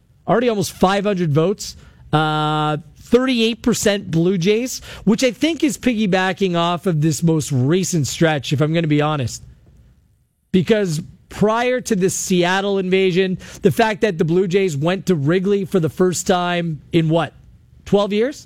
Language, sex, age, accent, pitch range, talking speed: English, male, 40-59, American, 165-220 Hz, 155 wpm